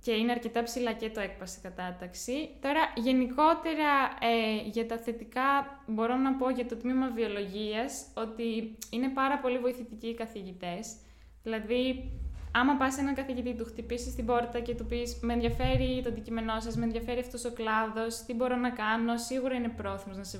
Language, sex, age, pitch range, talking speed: Greek, female, 10-29, 205-255 Hz, 175 wpm